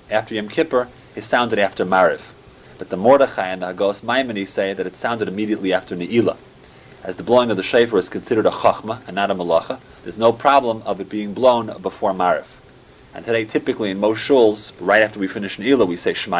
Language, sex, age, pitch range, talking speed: English, male, 30-49, 100-130 Hz, 210 wpm